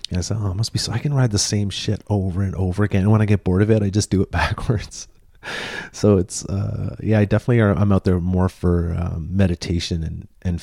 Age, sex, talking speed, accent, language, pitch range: 30-49, male, 255 wpm, American, English, 85-100 Hz